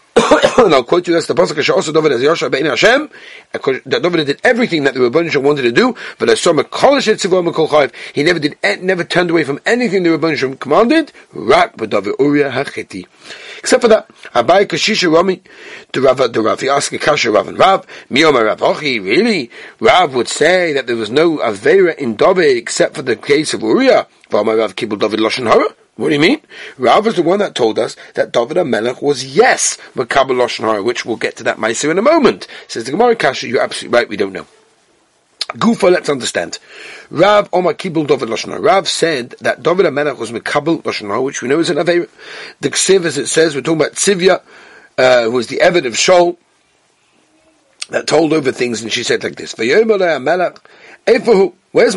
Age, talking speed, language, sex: 40-59, 190 wpm, English, male